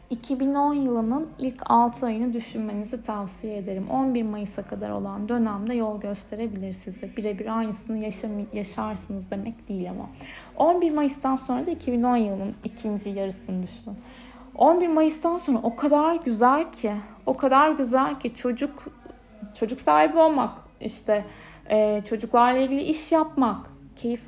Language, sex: Turkish, female